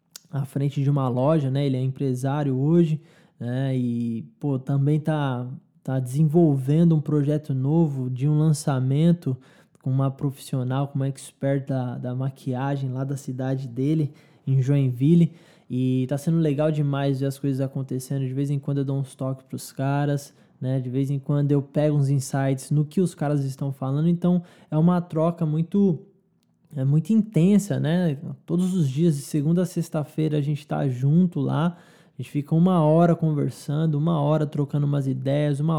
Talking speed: 175 wpm